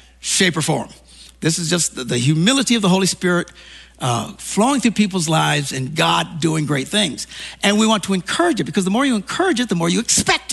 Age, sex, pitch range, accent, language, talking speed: 60-79, male, 160-230 Hz, American, English, 220 wpm